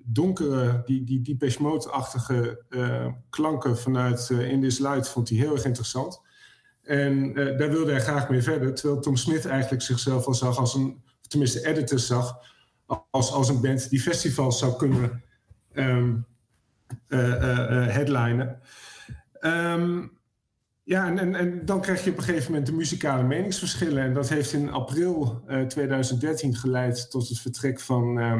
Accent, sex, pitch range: Dutch, male, 120-140 Hz